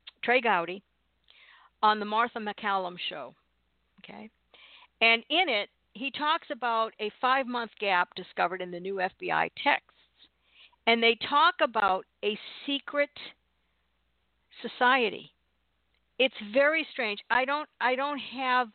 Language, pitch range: English, 185-255 Hz